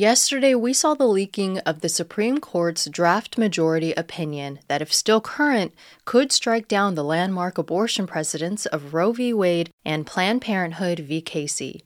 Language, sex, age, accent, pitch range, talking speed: English, female, 20-39, American, 165-215 Hz, 155 wpm